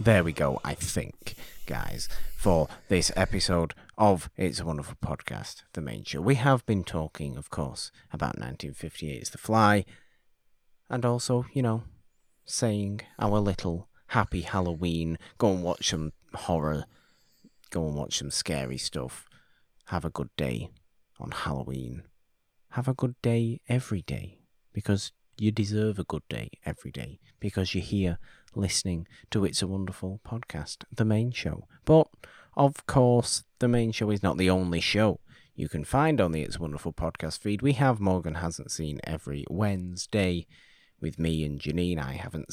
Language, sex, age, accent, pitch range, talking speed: English, male, 30-49, British, 80-110 Hz, 160 wpm